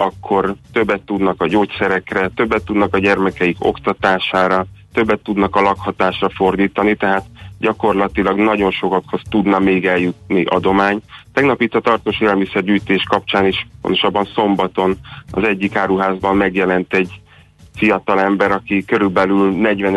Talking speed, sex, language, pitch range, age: 125 wpm, male, Hungarian, 95-100 Hz, 30-49